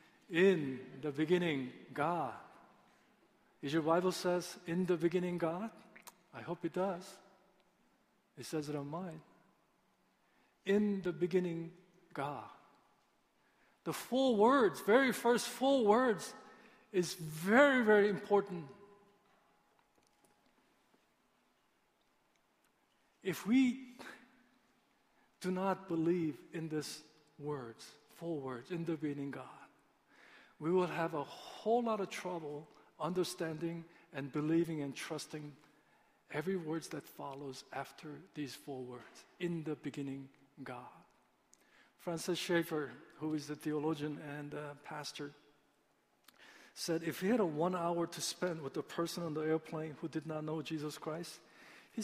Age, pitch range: 50-69, 150-195 Hz